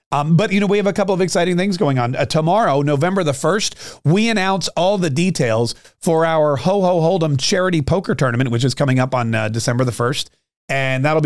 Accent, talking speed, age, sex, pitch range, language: American, 225 wpm, 40-59, male, 140-170 Hz, English